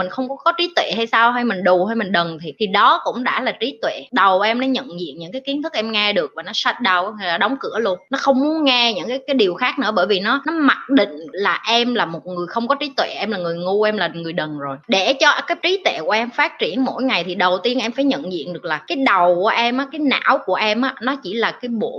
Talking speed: 305 wpm